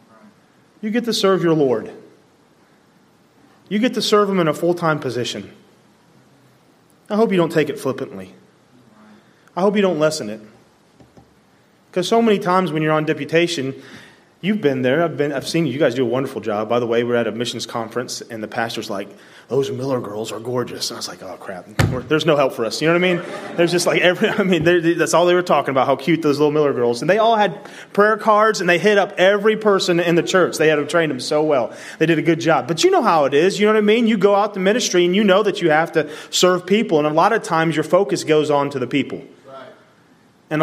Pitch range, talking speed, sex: 150-205 Hz, 245 wpm, male